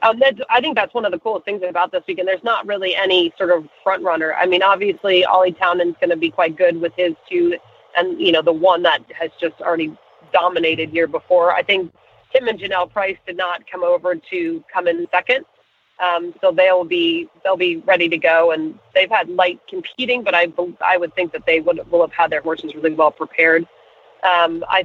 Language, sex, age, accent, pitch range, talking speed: English, female, 30-49, American, 170-205 Hz, 220 wpm